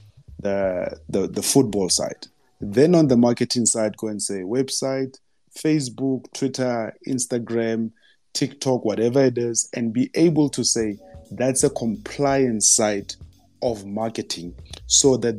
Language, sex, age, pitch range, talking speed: English, male, 30-49, 105-130 Hz, 135 wpm